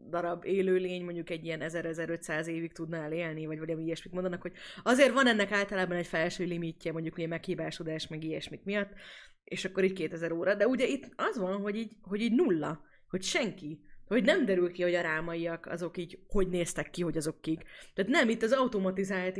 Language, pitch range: Hungarian, 170-220 Hz